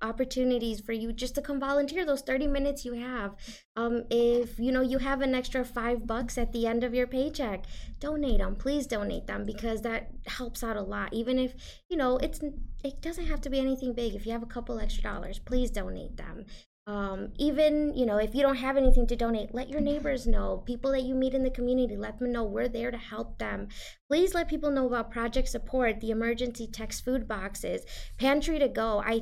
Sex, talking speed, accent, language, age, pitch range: female, 220 wpm, American, English, 20-39, 220-265 Hz